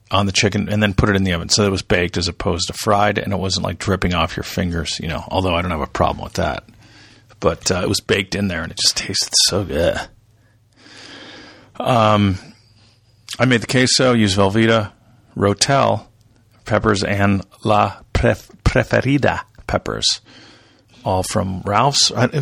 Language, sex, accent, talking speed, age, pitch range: English, male, American, 180 wpm, 40-59, 95-115 Hz